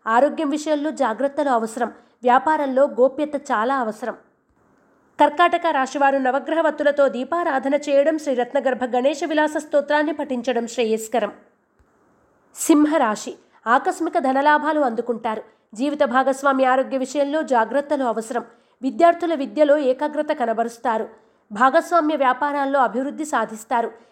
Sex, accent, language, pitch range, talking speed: female, native, Telugu, 250-300 Hz, 95 wpm